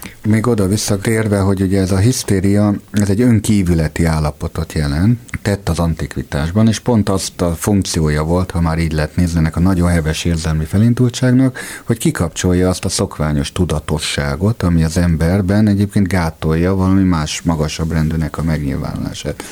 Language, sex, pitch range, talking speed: Hungarian, male, 80-100 Hz, 155 wpm